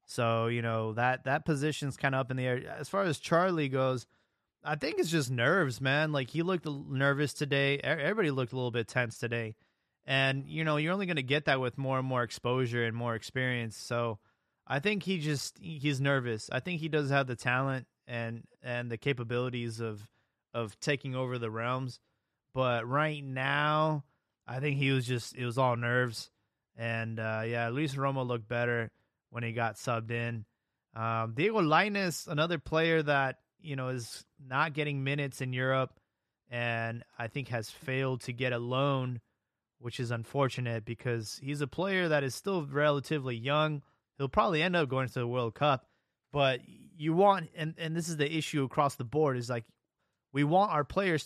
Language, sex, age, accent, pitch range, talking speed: English, male, 20-39, American, 120-150 Hz, 190 wpm